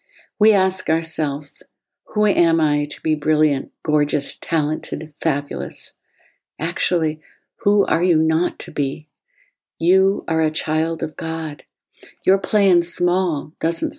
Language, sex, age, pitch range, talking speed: English, female, 60-79, 155-185 Hz, 125 wpm